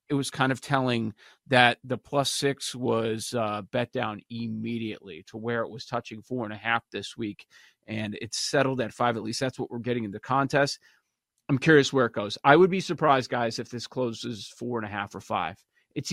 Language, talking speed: English, 220 wpm